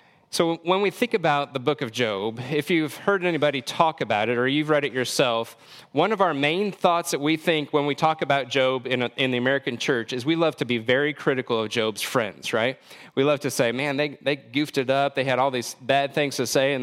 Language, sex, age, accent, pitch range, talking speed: English, male, 30-49, American, 120-150 Hz, 245 wpm